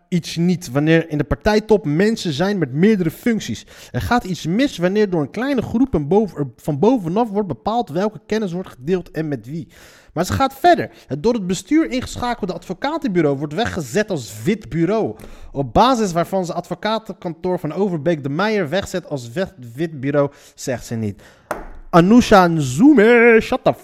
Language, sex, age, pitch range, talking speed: Dutch, male, 30-49, 145-210 Hz, 165 wpm